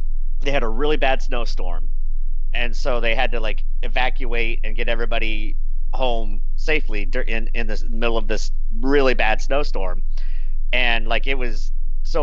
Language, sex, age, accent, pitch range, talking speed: English, male, 40-59, American, 105-125 Hz, 160 wpm